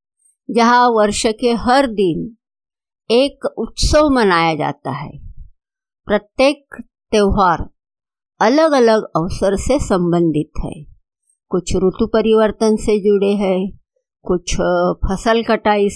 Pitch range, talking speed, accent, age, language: 190-255 Hz, 100 wpm, native, 50-69, Hindi